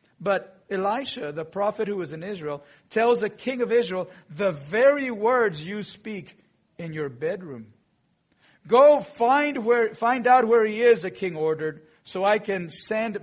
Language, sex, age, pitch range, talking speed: English, male, 50-69, 155-205 Hz, 160 wpm